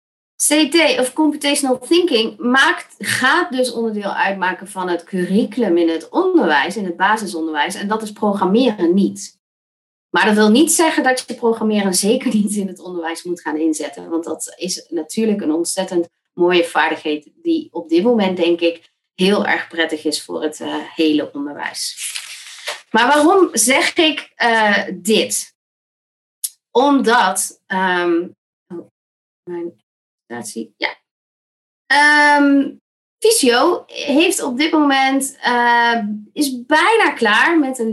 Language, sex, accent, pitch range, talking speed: Dutch, female, Dutch, 175-250 Hz, 130 wpm